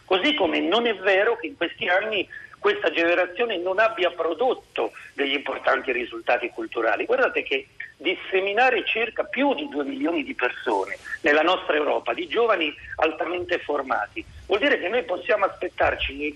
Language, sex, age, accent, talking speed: Italian, male, 50-69, native, 155 wpm